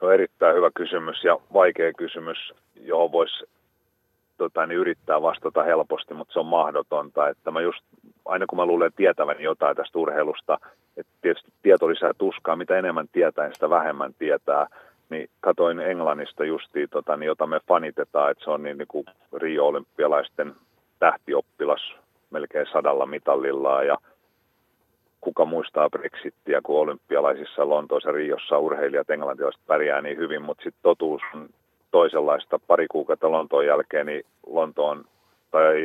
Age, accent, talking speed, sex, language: 40-59, native, 145 wpm, male, Finnish